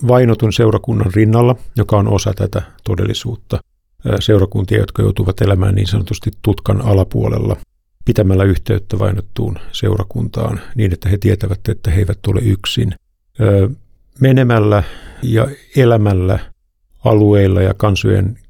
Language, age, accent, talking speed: Finnish, 50-69, native, 115 wpm